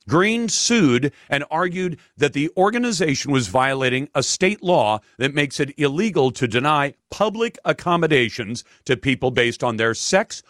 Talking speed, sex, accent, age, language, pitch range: 150 wpm, male, American, 50-69, English, 125-175 Hz